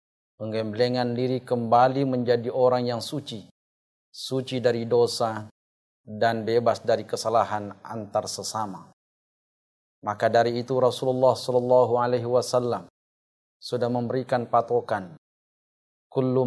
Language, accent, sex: Indonesian, native, male